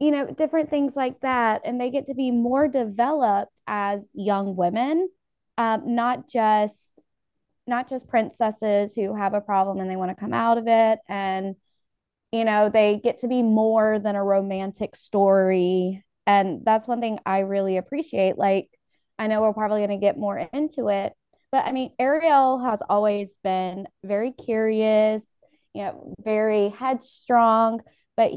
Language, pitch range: English, 200-255 Hz